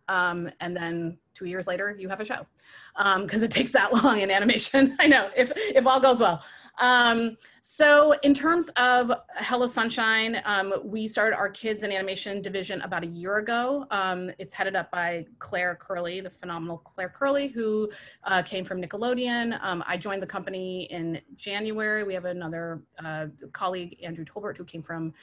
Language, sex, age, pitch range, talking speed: English, female, 30-49, 175-215 Hz, 185 wpm